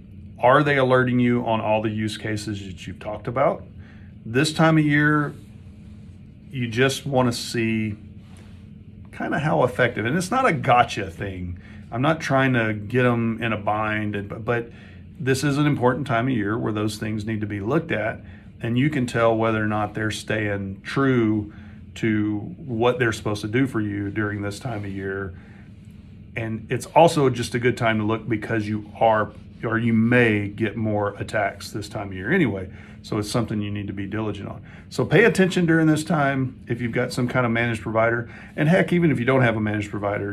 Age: 40-59